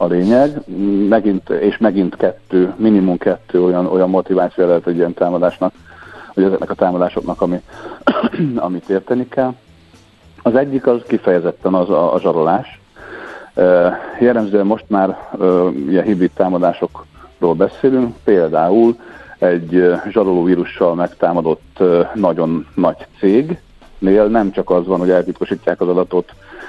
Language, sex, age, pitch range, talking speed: Hungarian, male, 50-69, 90-110 Hz, 120 wpm